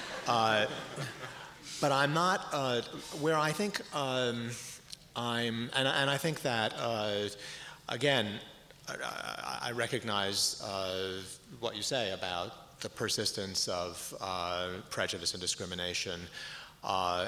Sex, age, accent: male, 40-59, American